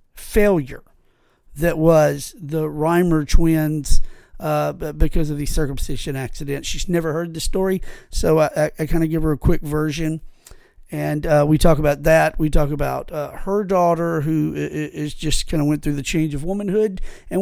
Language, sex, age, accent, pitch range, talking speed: English, male, 50-69, American, 150-200 Hz, 180 wpm